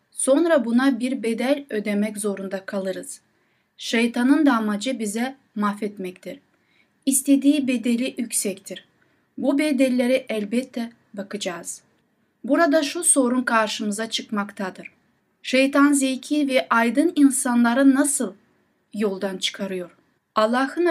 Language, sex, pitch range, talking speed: Turkish, female, 225-280 Hz, 95 wpm